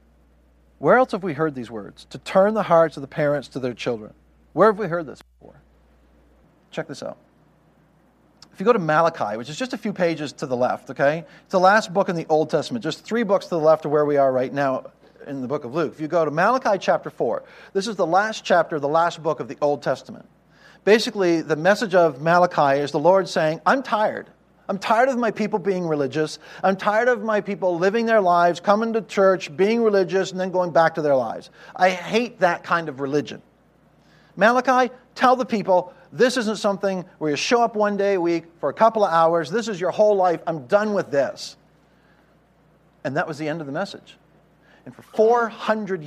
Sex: male